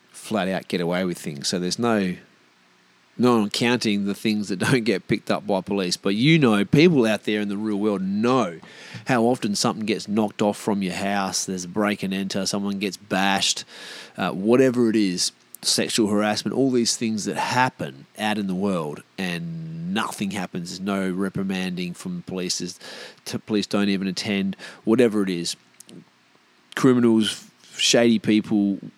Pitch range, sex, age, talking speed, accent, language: 95-115 Hz, male, 30-49, 175 wpm, Australian, English